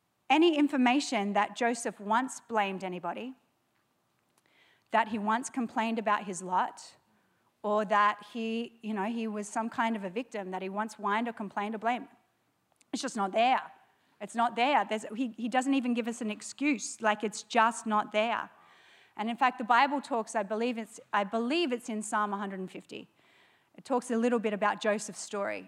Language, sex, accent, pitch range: English, female, Australian, 200-240 Hz